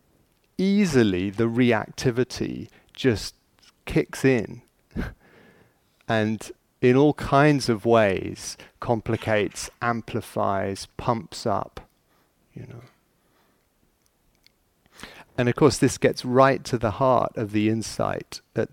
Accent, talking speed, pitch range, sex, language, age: British, 100 wpm, 105-125 Hz, male, English, 40-59